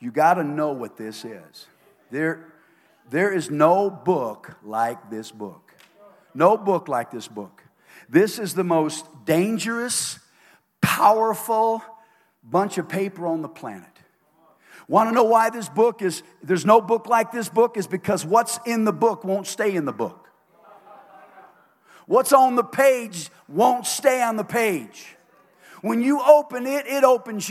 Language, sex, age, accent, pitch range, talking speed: English, male, 50-69, American, 155-235 Hz, 155 wpm